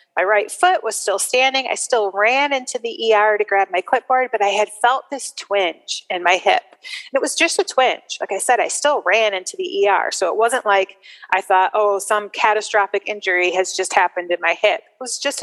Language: English